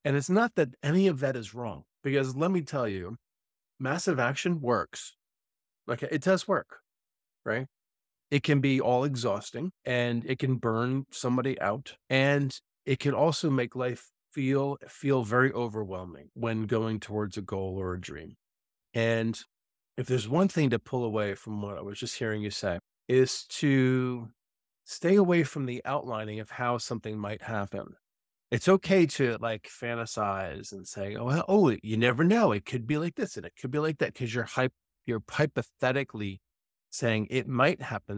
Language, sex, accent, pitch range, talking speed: English, male, American, 105-140 Hz, 175 wpm